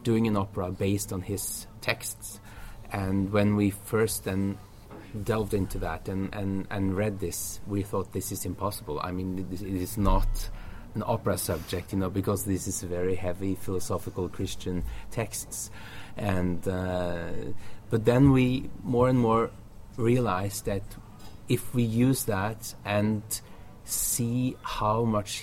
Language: English